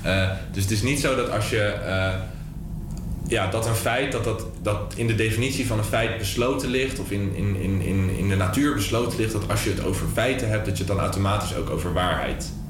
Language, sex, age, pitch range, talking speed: Dutch, male, 20-39, 85-100 Hz, 230 wpm